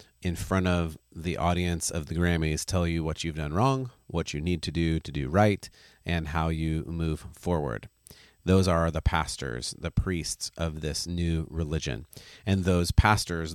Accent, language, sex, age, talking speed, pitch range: American, English, male, 30-49, 175 wpm, 80-90 Hz